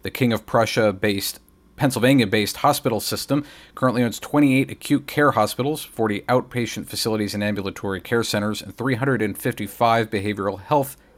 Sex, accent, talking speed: male, American, 130 wpm